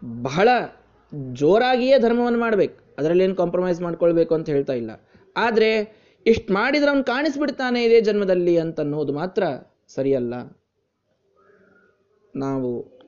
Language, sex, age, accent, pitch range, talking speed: Kannada, male, 20-39, native, 175-235 Hz, 105 wpm